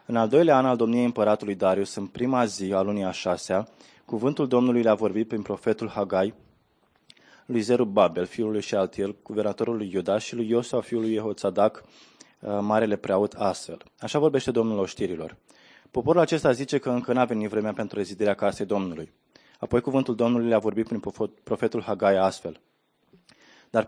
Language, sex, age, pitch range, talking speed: Romanian, male, 20-39, 105-130 Hz, 165 wpm